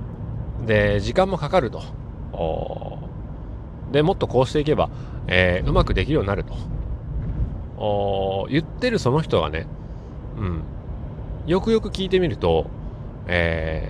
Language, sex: Japanese, male